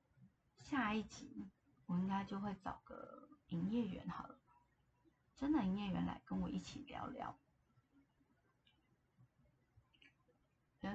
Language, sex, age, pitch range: Chinese, female, 20-39, 165-195 Hz